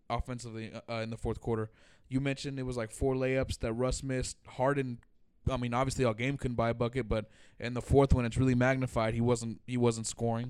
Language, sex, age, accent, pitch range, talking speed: English, male, 20-39, American, 115-145 Hz, 225 wpm